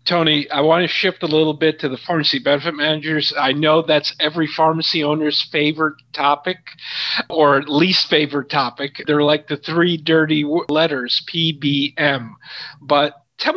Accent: American